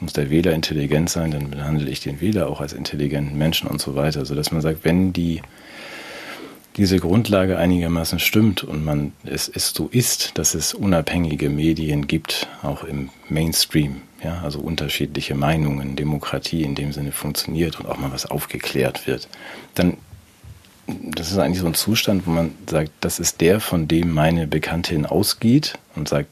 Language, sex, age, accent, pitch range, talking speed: German, male, 40-59, German, 75-90 Hz, 175 wpm